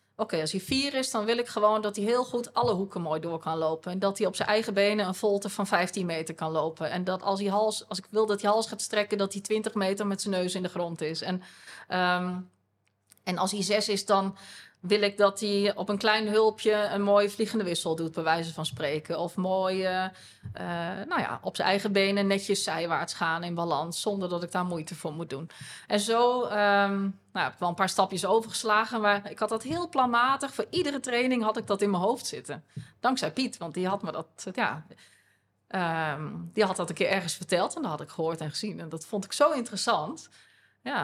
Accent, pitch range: Dutch, 170-215 Hz